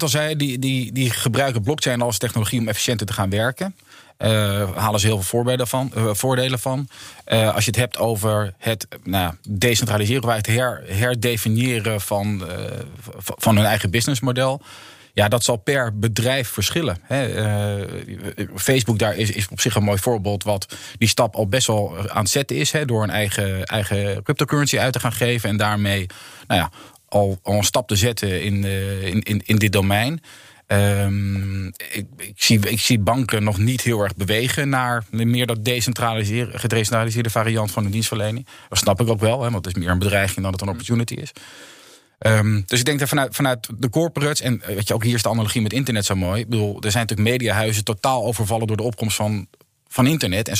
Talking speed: 200 wpm